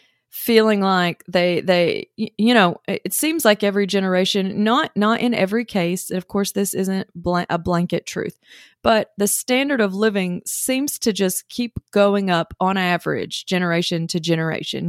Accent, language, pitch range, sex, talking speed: American, English, 180-220 Hz, female, 160 wpm